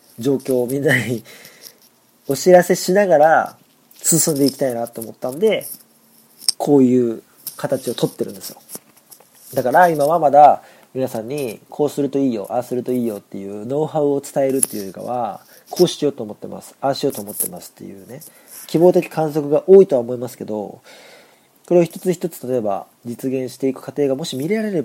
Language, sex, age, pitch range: Japanese, male, 40-59, 115-155 Hz